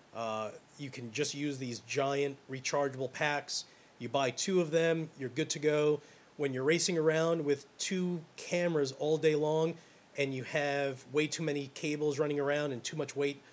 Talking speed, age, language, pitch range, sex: 180 wpm, 30-49, English, 130-160 Hz, male